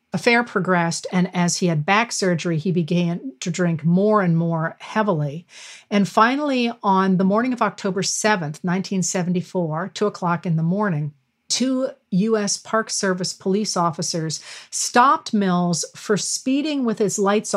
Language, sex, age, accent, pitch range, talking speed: English, female, 50-69, American, 175-215 Hz, 145 wpm